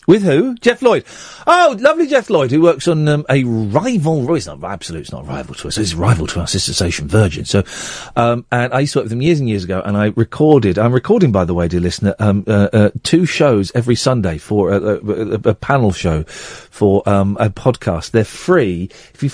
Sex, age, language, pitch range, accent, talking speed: male, 40-59, English, 105-155 Hz, British, 235 wpm